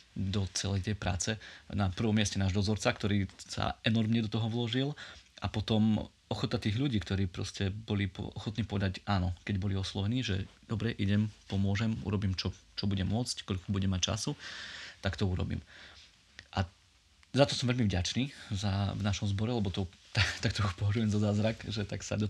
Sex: male